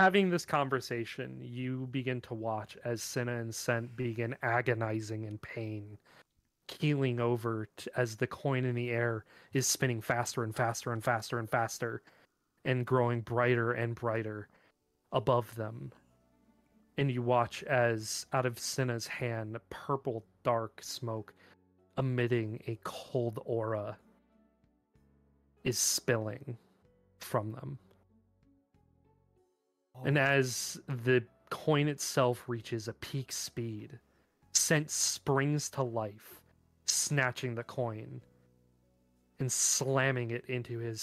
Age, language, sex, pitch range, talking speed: 30-49, English, male, 105-130 Hz, 115 wpm